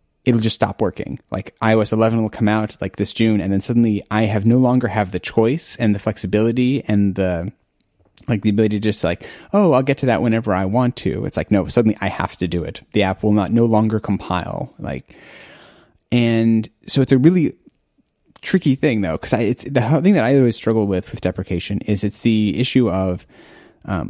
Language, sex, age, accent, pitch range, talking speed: English, male, 30-49, American, 100-125 Hz, 215 wpm